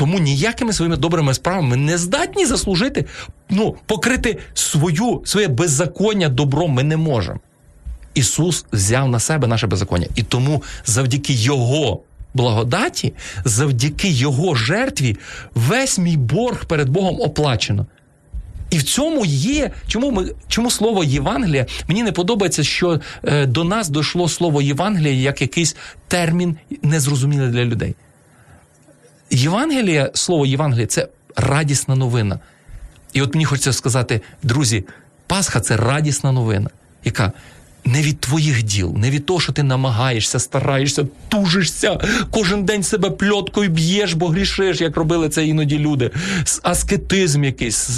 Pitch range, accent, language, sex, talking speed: 130-180 Hz, native, Ukrainian, male, 135 wpm